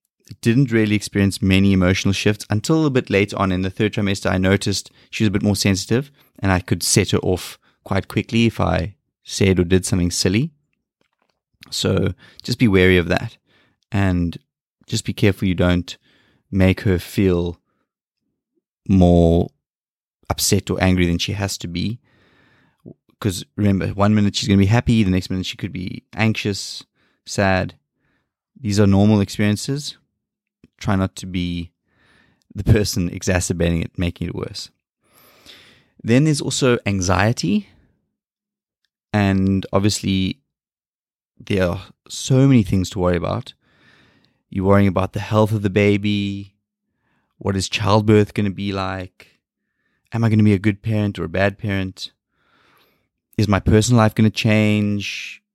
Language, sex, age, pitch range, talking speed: English, male, 20-39, 95-110 Hz, 155 wpm